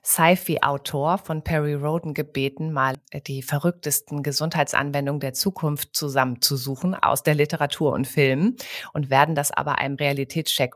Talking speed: 130 wpm